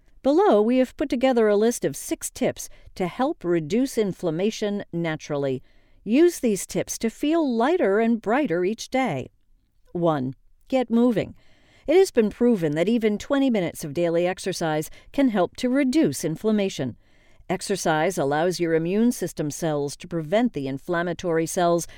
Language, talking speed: English, 150 wpm